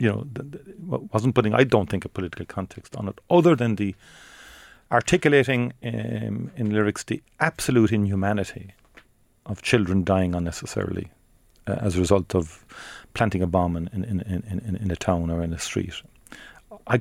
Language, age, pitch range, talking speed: English, 40-59, 95-115 Hz, 155 wpm